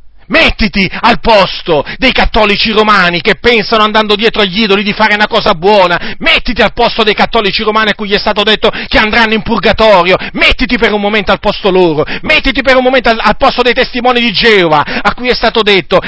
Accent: native